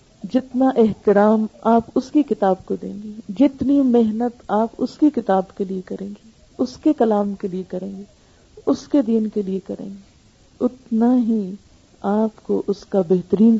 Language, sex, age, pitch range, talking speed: Urdu, female, 50-69, 210-275 Hz, 175 wpm